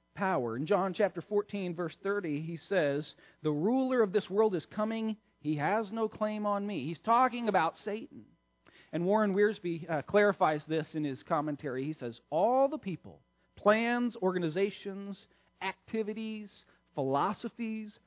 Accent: American